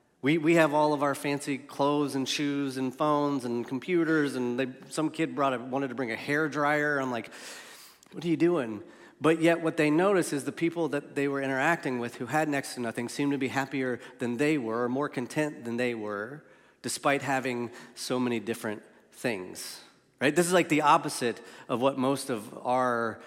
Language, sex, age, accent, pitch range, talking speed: English, male, 30-49, American, 120-150 Hz, 205 wpm